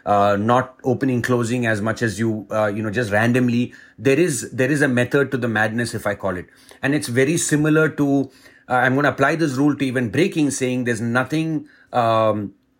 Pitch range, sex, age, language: 115-135 Hz, male, 30-49, English